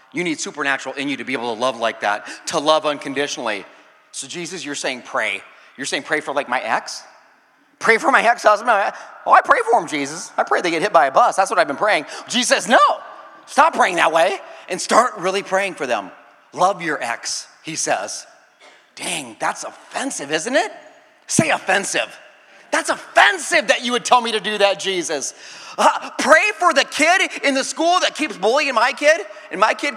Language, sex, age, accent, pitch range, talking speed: English, male, 30-49, American, 200-315 Hz, 205 wpm